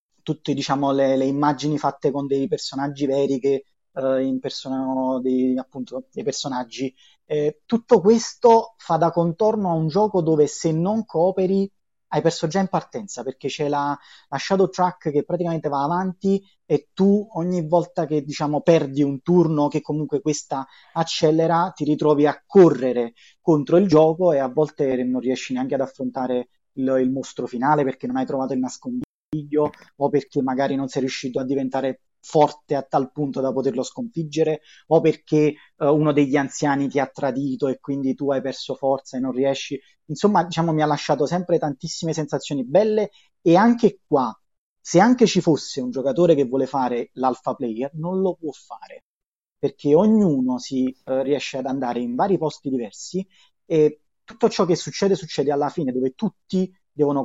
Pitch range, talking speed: 135-170 Hz, 170 wpm